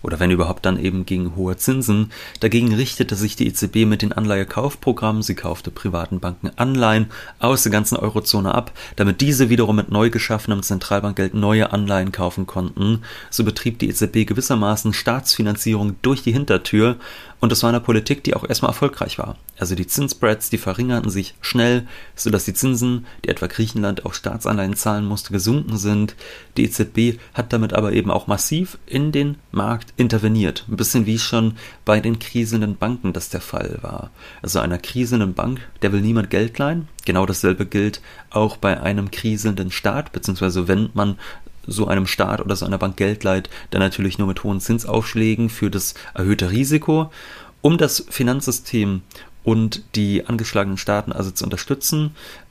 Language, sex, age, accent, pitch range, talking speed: German, male, 30-49, German, 100-120 Hz, 170 wpm